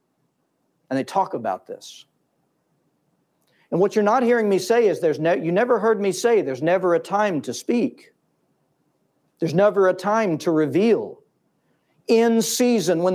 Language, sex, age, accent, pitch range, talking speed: English, male, 50-69, American, 150-225 Hz, 160 wpm